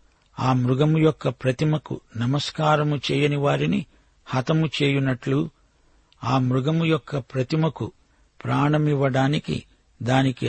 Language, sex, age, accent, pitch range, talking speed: Telugu, male, 60-79, native, 120-145 Hz, 85 wpm